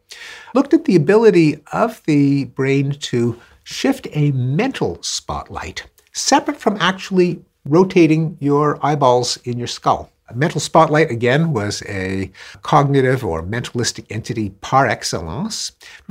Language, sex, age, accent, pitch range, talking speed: English, male, 50-69, American, 125-190 Hz, 125 wpm